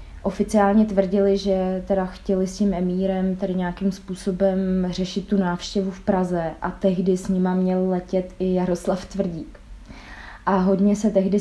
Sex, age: female, 20-39